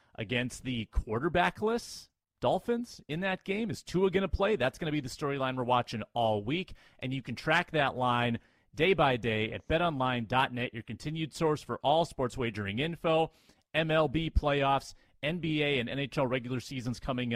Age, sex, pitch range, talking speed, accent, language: 30-49, male, 115-155 Hz, 165 wpm, American, English